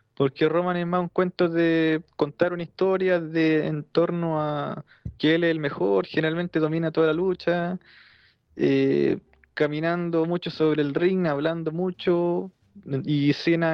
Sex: male